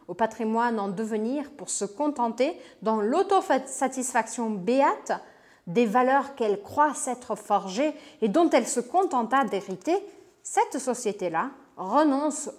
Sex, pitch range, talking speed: female, 205-285 Hz, 120 wpm